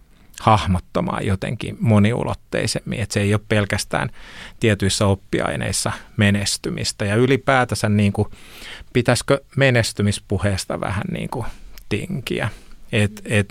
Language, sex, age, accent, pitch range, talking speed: Finnish, male, 30-49, native, 100-115 Hz, 100 wpm